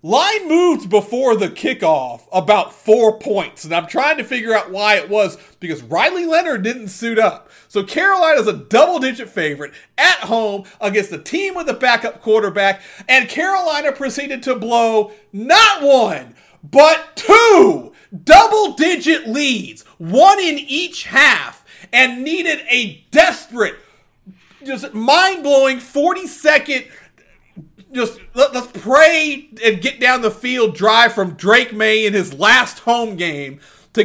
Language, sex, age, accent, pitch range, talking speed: English, male, 40-59, American, 190-265 Hz, 135 wpm